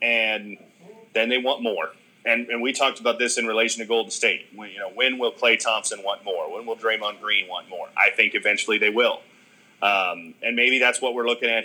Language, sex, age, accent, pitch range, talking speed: English, male, 30-49, American, 110-140 Hz, 225 wpm